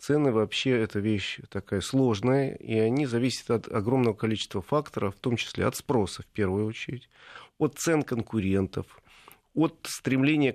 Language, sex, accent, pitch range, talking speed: Russian, male, native, 105-140 Hz, 150 wpm